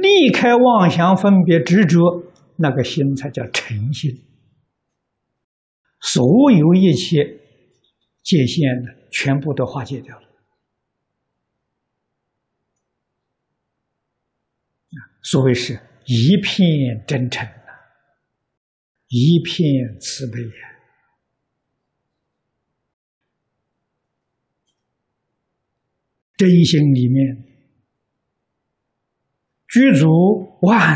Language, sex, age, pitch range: Chinese, male, 60-79, 130-180 Hz